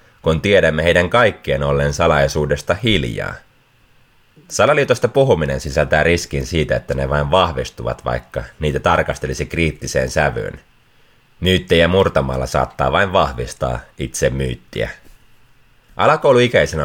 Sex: male